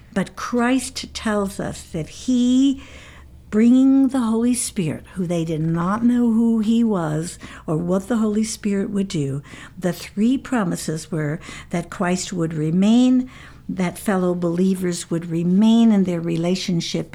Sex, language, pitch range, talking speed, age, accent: female, English, 165-225 Hz, 145 wpm, 60-79, American